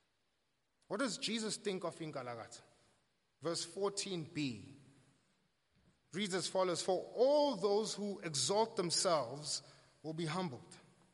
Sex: male